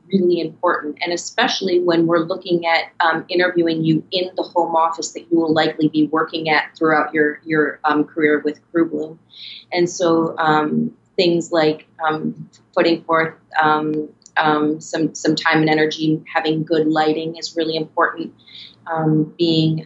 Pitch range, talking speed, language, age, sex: 155-170 Hz, 160 wpm, English, 30-49, female